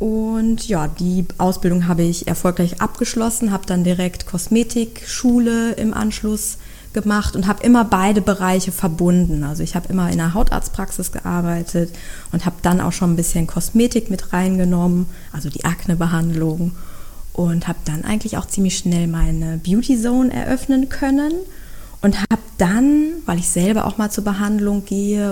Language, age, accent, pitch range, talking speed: German, 20-39, German, 180-225 Hz, 155 wpm